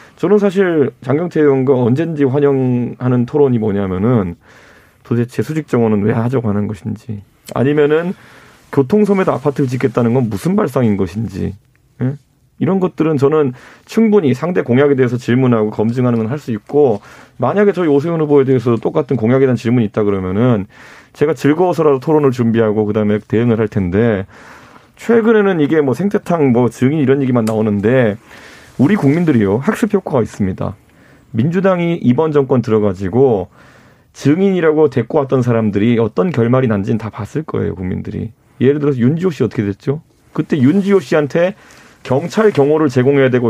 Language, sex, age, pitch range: Korean, male, 30-49, 115-150 Hz